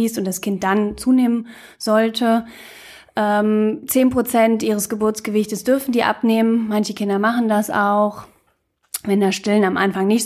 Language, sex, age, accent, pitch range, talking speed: German, female, 20-39, German, 205-230 Hz, 140 wpm